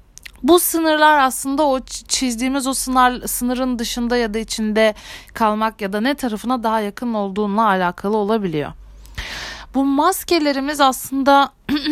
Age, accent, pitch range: 30-49, native, 220-270 Hz